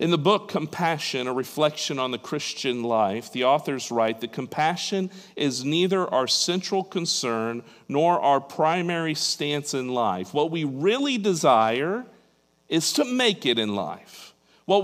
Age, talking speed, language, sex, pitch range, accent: 50-69, 150 wpm, English, male, 110-170 Hz, American